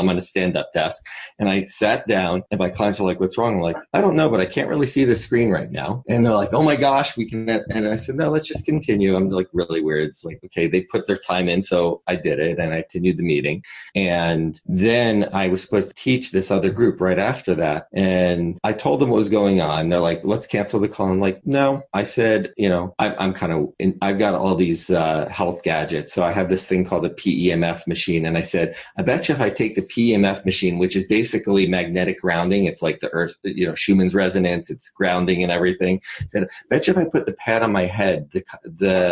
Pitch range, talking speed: 90-110 Hz, 250 wpm